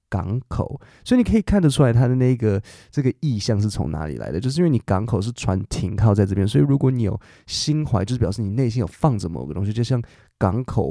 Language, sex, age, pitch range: Chinese, male, 20-39, 100-125 Hz